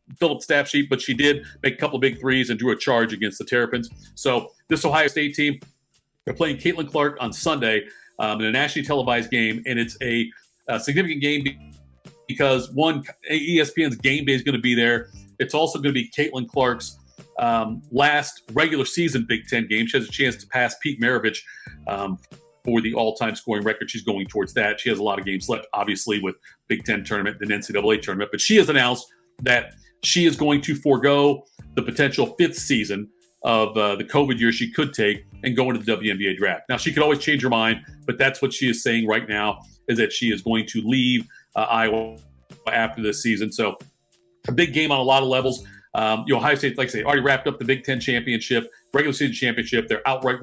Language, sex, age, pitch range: English, male, 40-59, 110-140 Hz